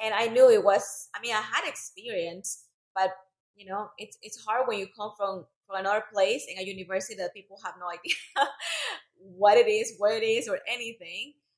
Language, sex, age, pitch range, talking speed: English, female, 20-39, 185-230 Hz, 200 wpm